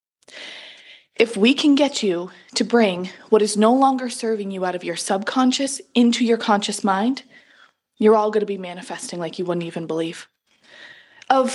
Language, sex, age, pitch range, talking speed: English, female, 20-39, 205-260 Hz, 170 wpm